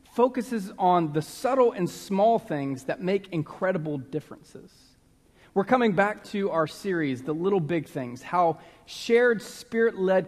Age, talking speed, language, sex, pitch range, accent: 40-59, 140 wpm, English, male, 155-200 Hz, American